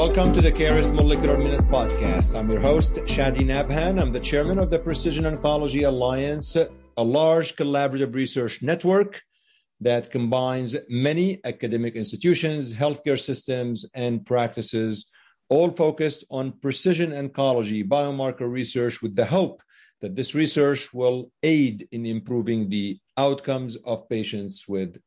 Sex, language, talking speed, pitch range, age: male, English, 135 wpm, 115-155 Hz, 40-59